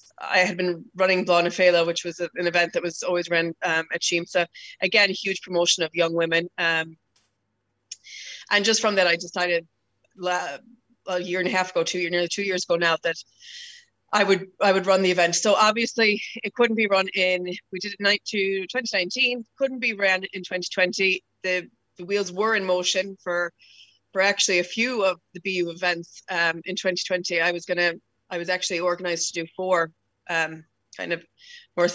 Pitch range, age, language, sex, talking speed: 175-205 Hz, 20-39, English, female, 195 wpm